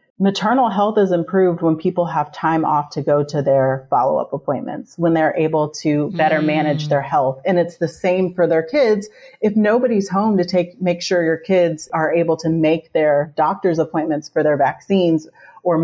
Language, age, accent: English, 30-49, American